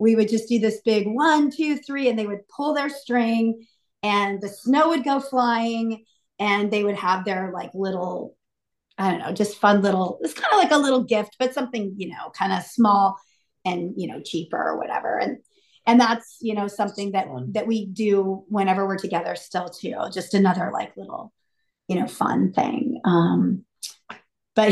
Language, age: English, 40-59